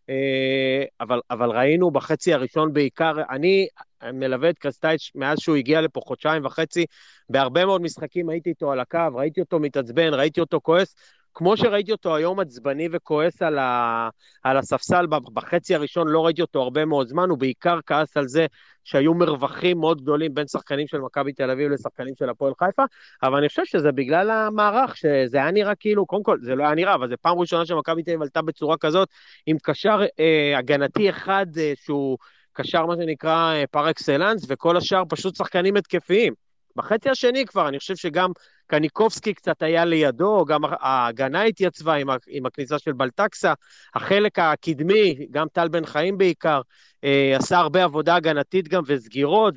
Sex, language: male, Hebrew